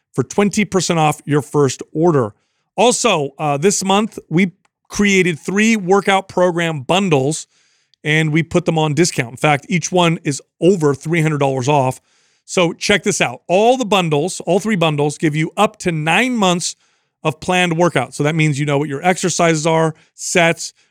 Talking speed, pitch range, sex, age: 170 wpm, 150-185 Hz, male, 40-59